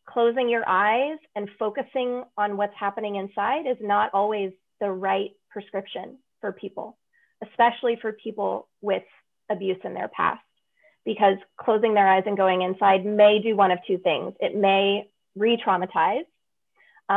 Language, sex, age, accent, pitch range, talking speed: English, female, 30-49, American, 200-250 Hz, 145 wpm